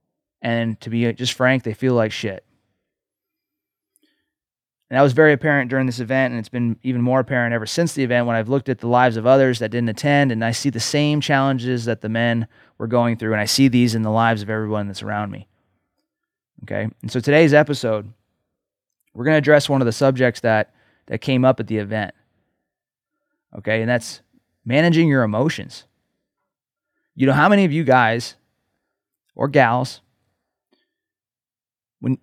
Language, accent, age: English, American, 20-39